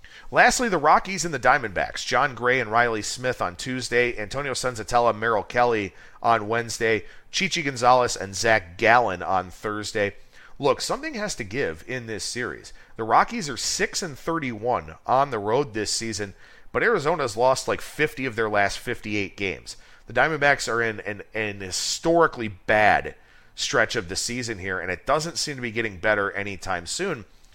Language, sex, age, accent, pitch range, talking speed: English, male, 40-59, American, 110-140 Hz, 170 wpm